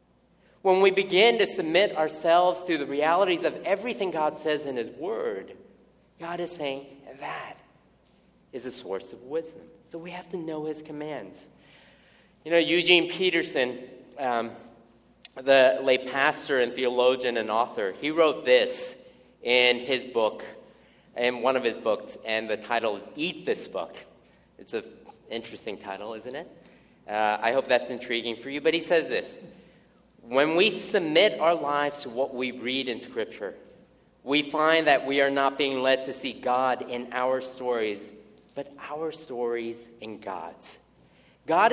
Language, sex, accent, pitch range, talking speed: English, male, American, 125-175 Hz, 160 wpm